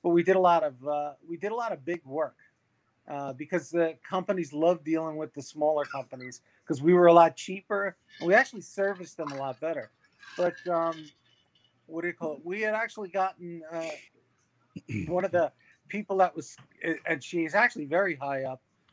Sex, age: male, 40-59